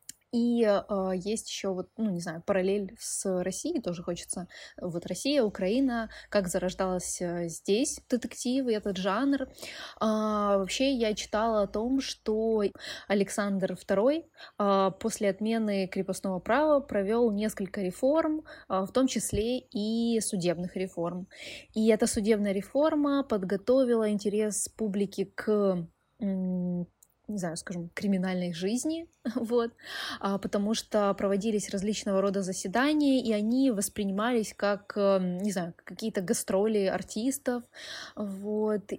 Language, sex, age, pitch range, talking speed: Russian, female, 20-39, 190-230 Hz, 115 wpm